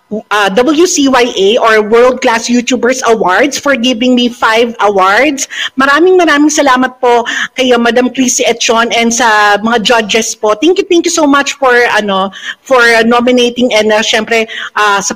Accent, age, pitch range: native, 50-69, 220-280 Hz